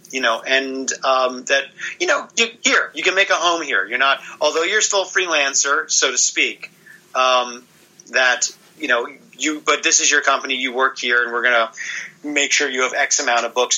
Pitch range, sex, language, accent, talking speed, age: 120-150 Hz, male, English, American, 215 wpm, 40-59